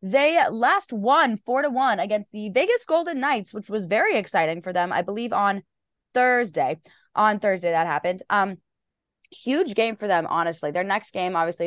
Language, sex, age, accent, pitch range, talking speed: English, female, 20-39, American, 175-235 Hz, 180 wpm